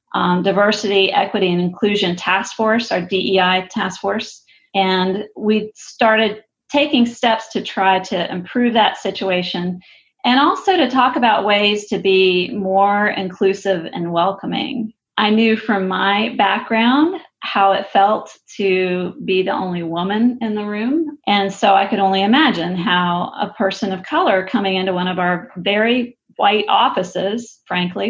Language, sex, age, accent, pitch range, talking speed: English, female, 40-59, American, 190-225 Hz, 150 wpm